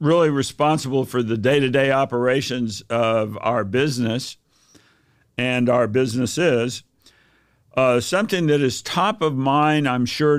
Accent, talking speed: American, 120 wpm